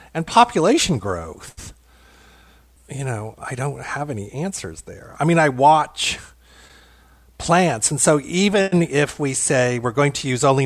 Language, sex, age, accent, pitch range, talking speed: French, male, 40-59, American, 105-145 Hz, 150 wpm